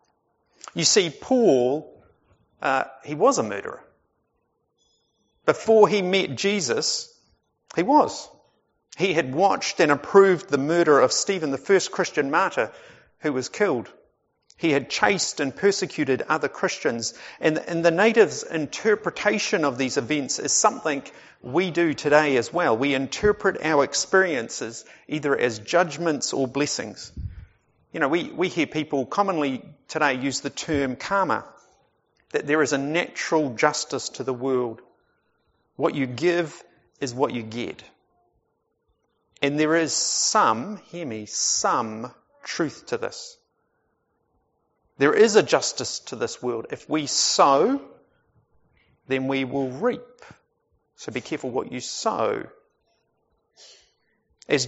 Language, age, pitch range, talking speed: English, 50-69, 135-195 Hz, 130 wpm